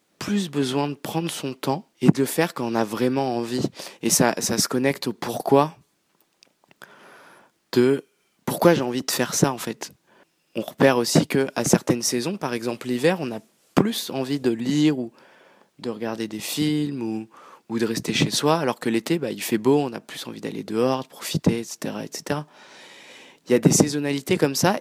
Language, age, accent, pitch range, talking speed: French, 20-39, French, 125-165 Hz, 195 wpm